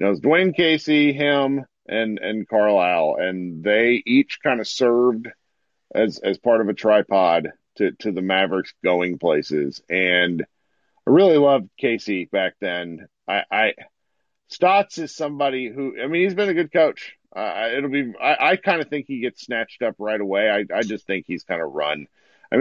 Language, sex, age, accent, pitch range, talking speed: English, male, 40-59, American, 100-140 Hz, 185 wpm